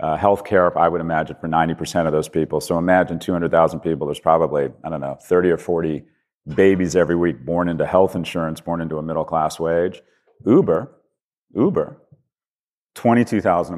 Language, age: English, 40-59